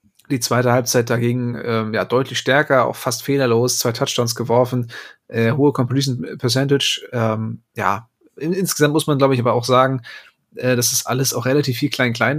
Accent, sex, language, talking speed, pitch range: German, male, German, 180 wpm, 120-135 Hz